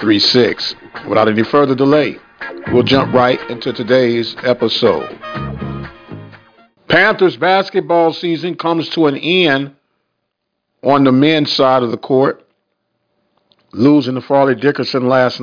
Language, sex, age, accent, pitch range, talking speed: English, male, 50-69, American, 120-150 Hz, 115 wpm